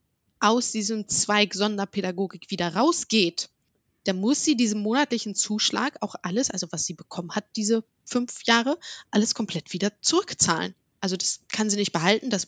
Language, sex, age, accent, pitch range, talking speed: German, female, 20-39, German, 195-245 Hz, 160 wpm